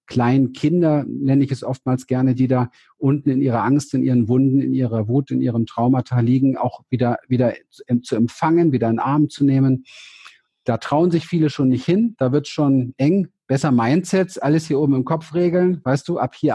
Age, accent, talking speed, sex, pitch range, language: 50-69, German, 205 wpm, male, 120-155 Hz, German